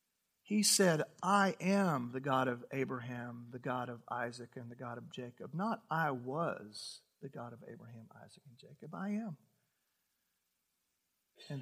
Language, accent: English, American